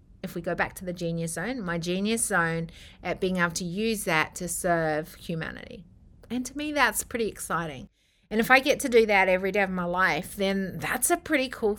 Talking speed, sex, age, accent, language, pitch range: 220 wpm, female, 30-49, Australian, English, 170-235 Hz